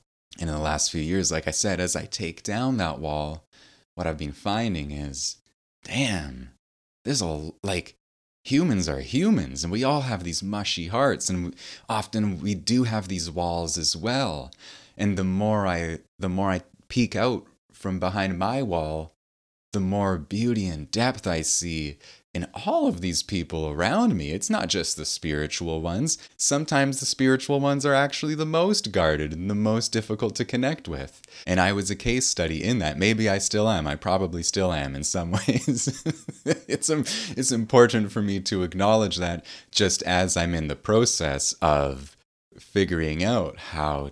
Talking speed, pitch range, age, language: 175 wpm, 75-110 Hz, 20-39, English